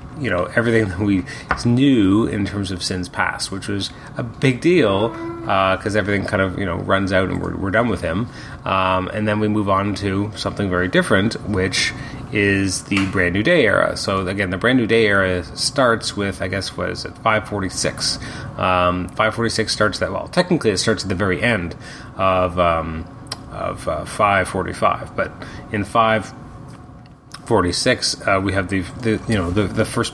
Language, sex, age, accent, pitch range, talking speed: English, male, 30-49, American, 95-120 Hz, 200 wpm